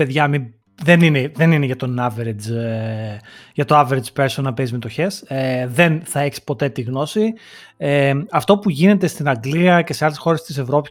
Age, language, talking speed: 30-49, Greek, 165 wpm